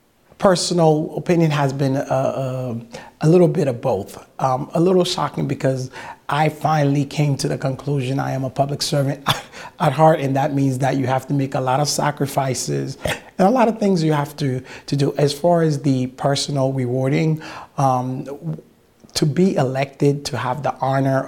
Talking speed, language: 185 wpm, English